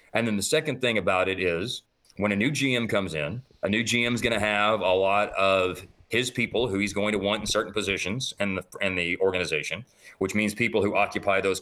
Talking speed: 230 wpm